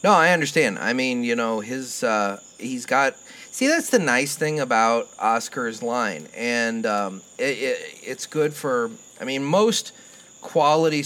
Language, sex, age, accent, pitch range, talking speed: English, male, 30-49, American, 110-140 Hz, 165 wpm